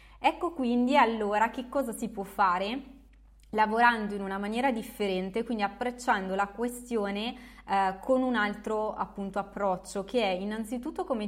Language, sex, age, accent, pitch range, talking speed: Italian, female, 20-39, native, 195-240 Hz, 145 wpm